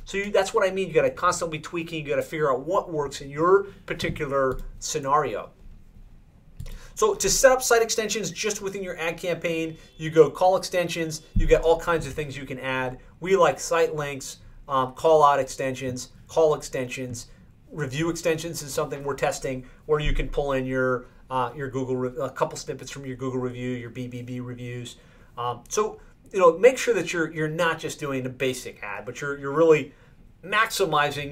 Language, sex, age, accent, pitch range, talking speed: English, male, 30-49, American, 135-180 Hz, 195 wpm